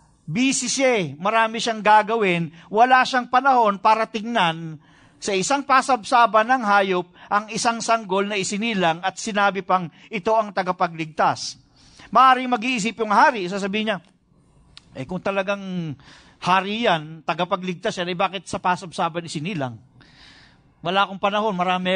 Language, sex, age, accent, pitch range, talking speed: English, male, 50-69, Filipino, 155-225 Hz, 135 wpm